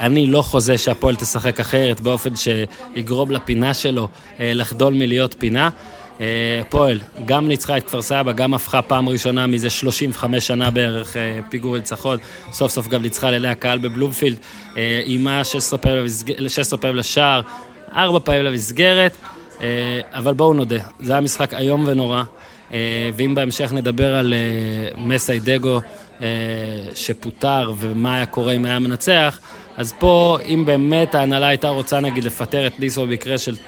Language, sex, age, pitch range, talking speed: Hebrew, male, 20-39, 120-140 Hz, 150 wpm